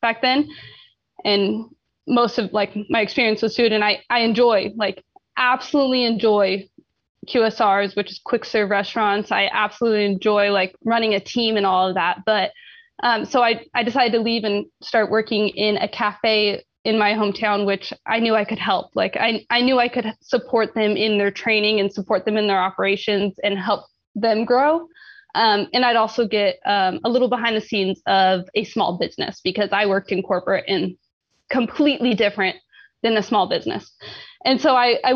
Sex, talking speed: female, 185 wpm